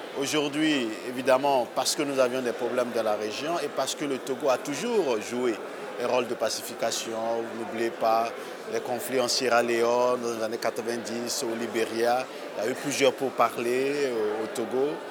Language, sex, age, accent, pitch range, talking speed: French, male, 50-69, French, 115-140 Hz, 180 wpm